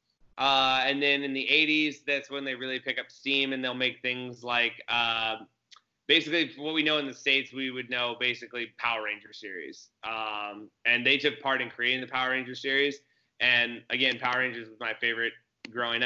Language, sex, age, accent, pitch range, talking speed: English, male, 20-39, American, 115-135 Hz, 195 wpm